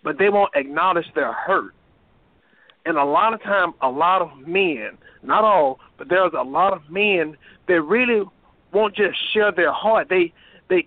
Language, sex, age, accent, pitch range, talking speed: English, male, 50-69, American, 165-210 Hz, 175 wpm